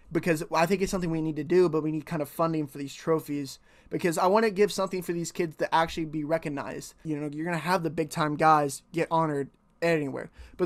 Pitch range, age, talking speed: 150-170 Hz, 20-39, 255 wpm